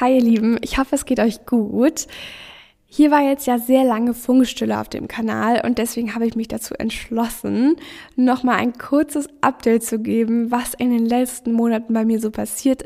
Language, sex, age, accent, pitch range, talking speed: German, female, 10-29, German, 220-250 Hz, 190 wpm